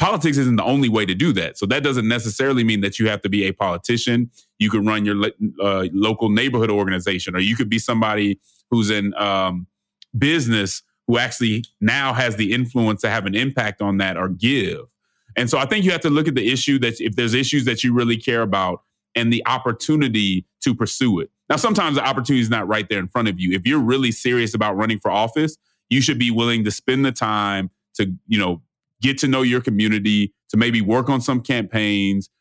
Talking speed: 220 wpm